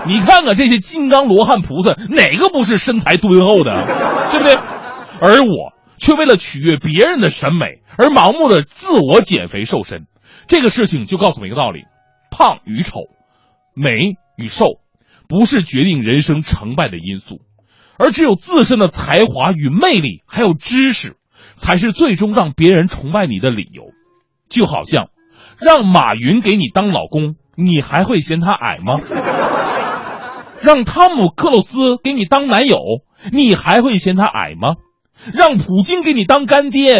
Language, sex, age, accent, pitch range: Chinese, male, 30-49, native, 165-270 Hz